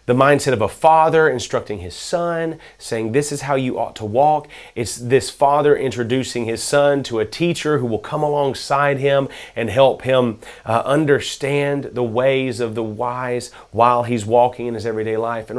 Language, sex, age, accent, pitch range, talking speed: English, male, 30-49, American, 120-150 Hz, 185 wpm